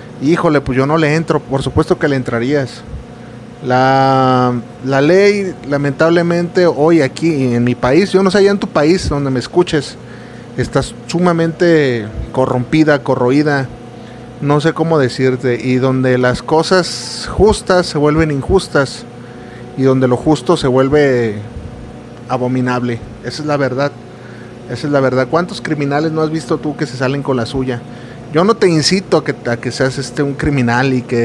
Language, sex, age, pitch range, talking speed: Spanish, male, 30-49, 120-155 Hz, 165 wpm